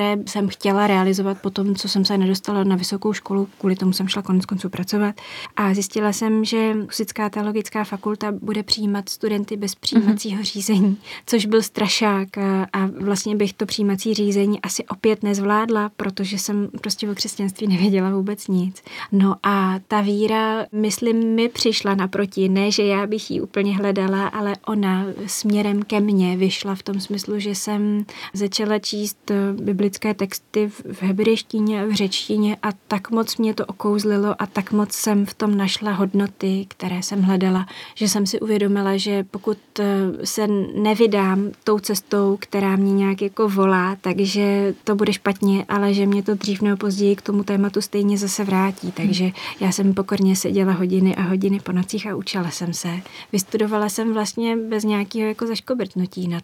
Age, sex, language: 20-39, female, Czech